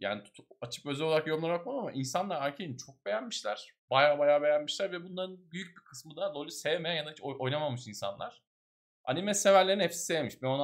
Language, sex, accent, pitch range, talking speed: Turkish, male, native, 120-170 Hz, 185 wpm